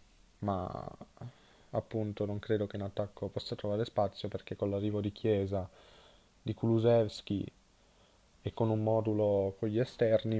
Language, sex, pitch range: Italian, male, 100-110 Hz